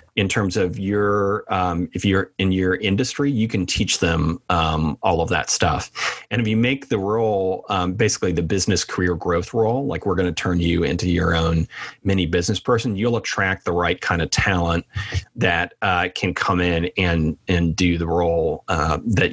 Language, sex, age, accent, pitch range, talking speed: English, male, 30-49, American, 95-115 Hz, 195 wpm